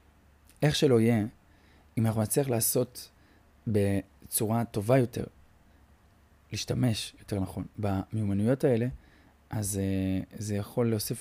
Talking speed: 100 wpm